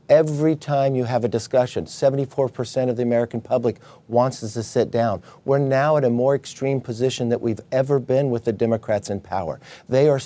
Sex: male